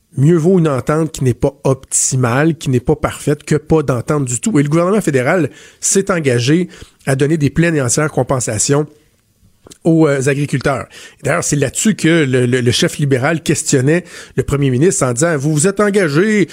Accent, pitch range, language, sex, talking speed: Canadian, 135-170 Hz, French, male, 190 wpm